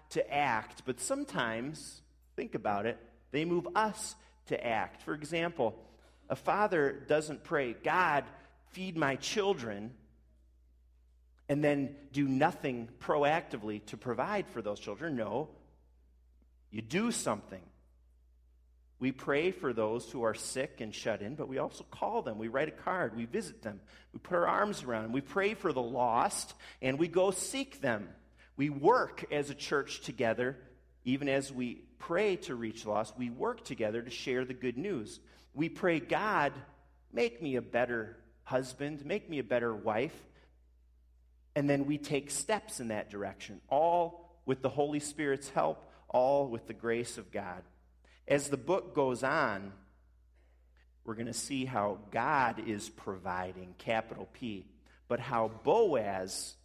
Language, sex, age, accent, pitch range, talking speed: English, male, 40-59, American, 95-145 Hz, 155 wpm